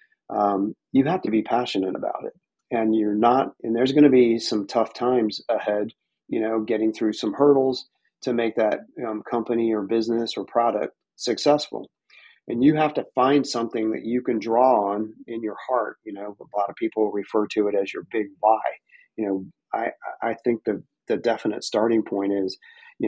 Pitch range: 105-125 Hz